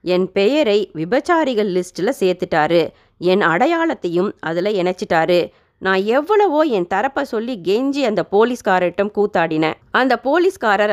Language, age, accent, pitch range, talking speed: Tamil, 30-49, native, 180-250 Hz, 110 wpm